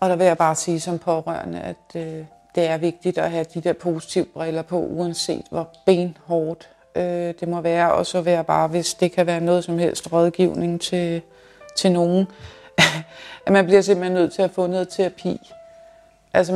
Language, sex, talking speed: Danish, female, 195 wpm